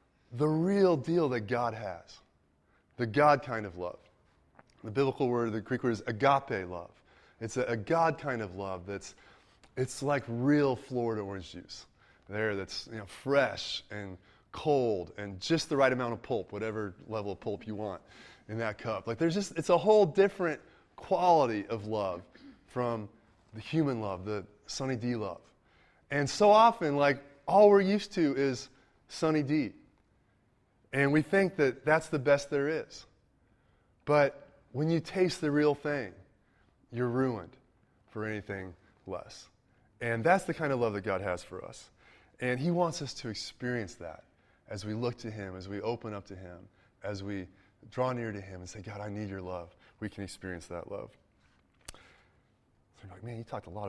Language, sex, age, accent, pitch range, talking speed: English, male, 20-39, American, 100-140 Hz, 180 wpm